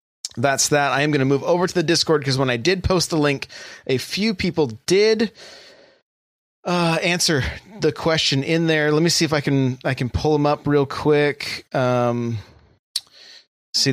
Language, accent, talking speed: English, American, 185 wpm